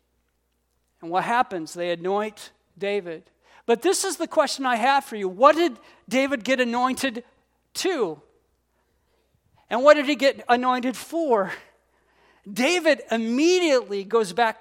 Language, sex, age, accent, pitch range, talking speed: English, male, 50-69, American, 200-285 Hz, 130 wpm